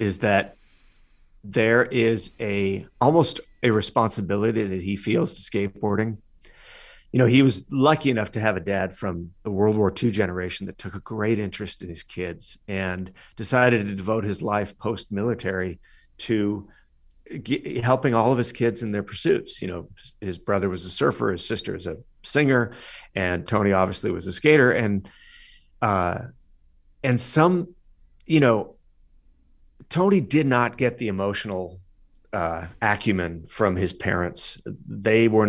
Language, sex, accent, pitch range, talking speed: English, male, American, 90-115 Hz, 155 wpm